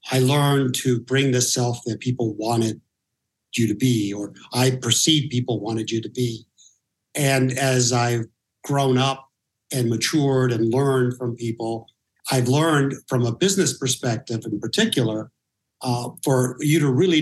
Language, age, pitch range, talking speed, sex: English, 50-69, 120-145 Hz, 155 wpm, male